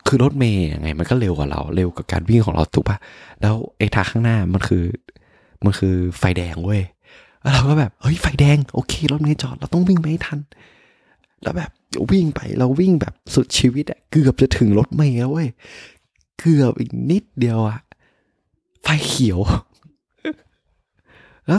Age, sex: 20-39, male